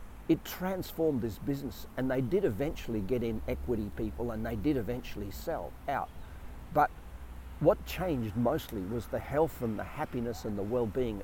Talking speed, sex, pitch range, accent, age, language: 165 wpm, male, 100-125 Hz, Australian, 50-69, English